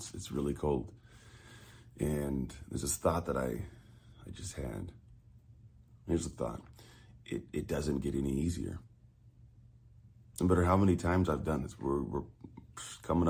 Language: English